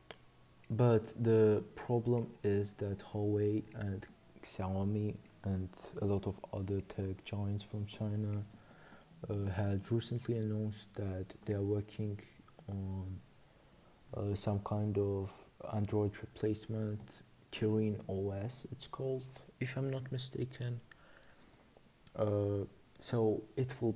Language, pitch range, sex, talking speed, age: English, 100-115 Hz, male, 110 wpm, 20-39